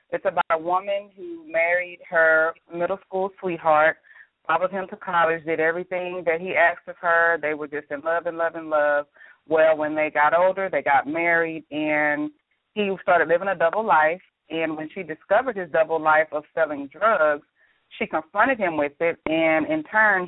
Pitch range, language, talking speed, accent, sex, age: 160-190 Hz, English, 185 wpm, American, female, 30-49